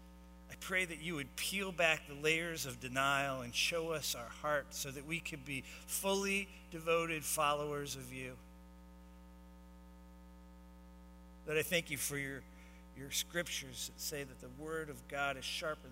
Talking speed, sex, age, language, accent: 160 wpm, male, 50-69, English, American